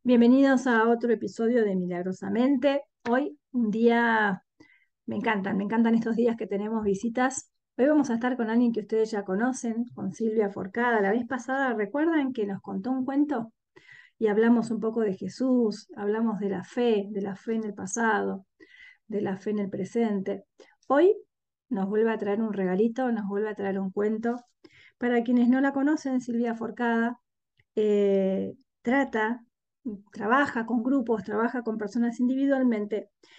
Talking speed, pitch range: 165 wpm, 210-260 Hz